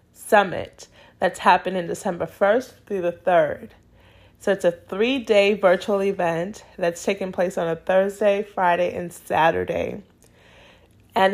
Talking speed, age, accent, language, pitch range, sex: 125 wpm, 30-49, American, English, 170-200 Hz, female